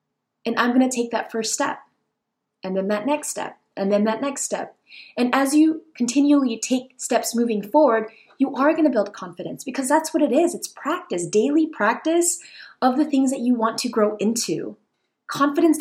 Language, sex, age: English, female, 20-39